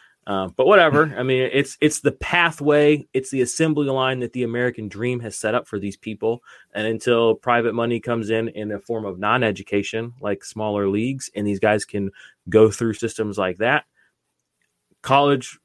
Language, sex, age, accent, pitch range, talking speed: English, male, 20-39, American, 110-140 Hz, 180 wpm